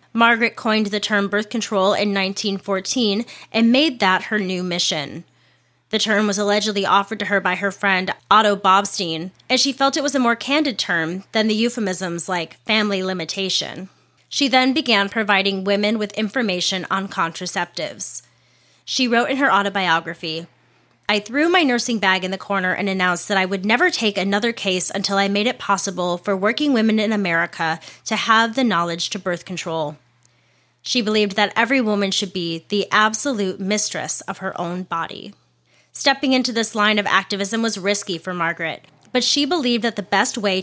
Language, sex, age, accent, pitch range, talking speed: English, female, 30-49, American, 185-230 Hz, 175 wpm